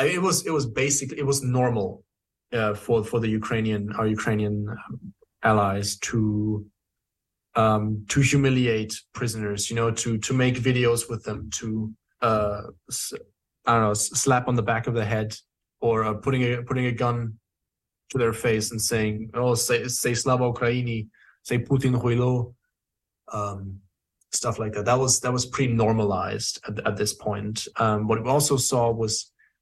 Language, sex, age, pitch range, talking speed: Danish, male, 20-39, 110-125 Hz, 160 wpm